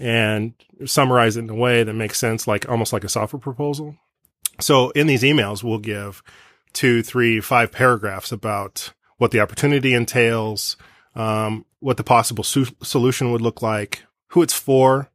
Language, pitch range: English, 110-130 Hz